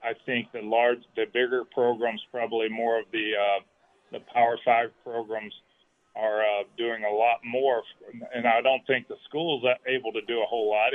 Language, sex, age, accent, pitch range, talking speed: English, male, 40-59, American, 110-130 Hz, 185 wpm